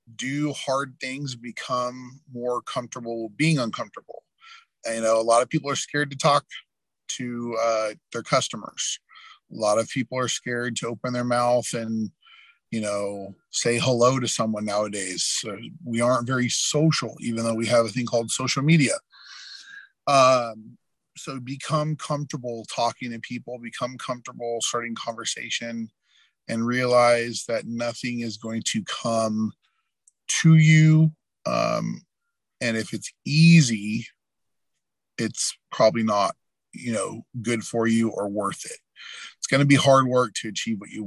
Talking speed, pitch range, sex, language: 150 wpm, 115-135 Hz, male, English